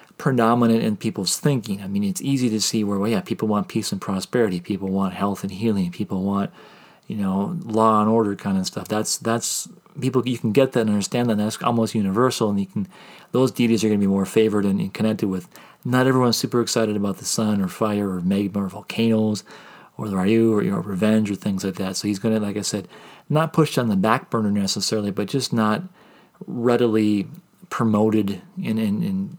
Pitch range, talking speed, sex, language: 100-125 Hz, 215 wpm, male, English